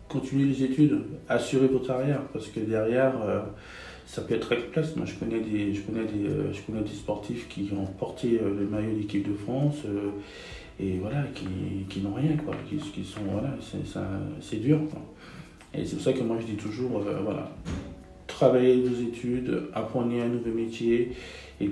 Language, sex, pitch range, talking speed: French, male, 105-125 Hz, 200 wpm